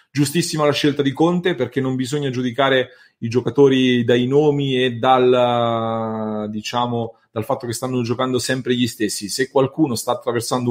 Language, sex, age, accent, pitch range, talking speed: English, male, 30-49, Italian, 120-145 Hz, 155 wpm